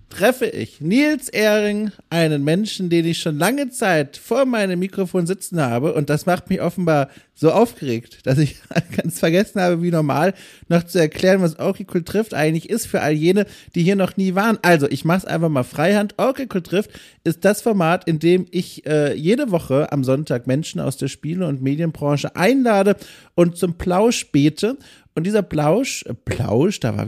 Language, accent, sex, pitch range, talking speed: German, German, male, 140-190 Hz, 185 wpm